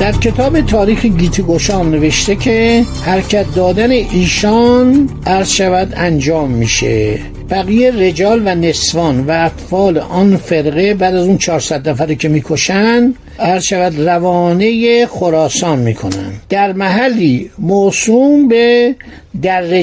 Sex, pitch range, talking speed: male, 160-215 Hz, 110 wpm